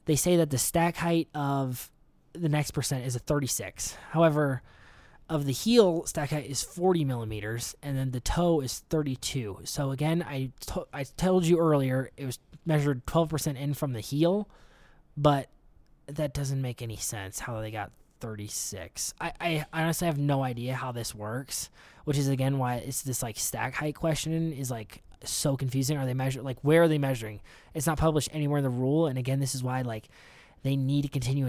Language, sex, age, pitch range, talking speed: English, male, 20-39, 120-155 Hz, 195 wpm